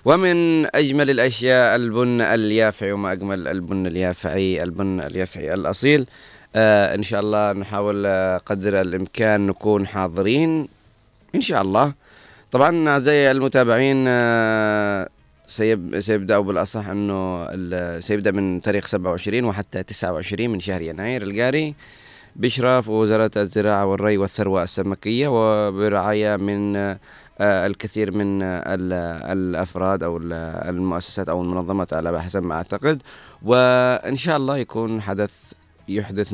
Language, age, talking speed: Arabic, 30-49, 110 wpm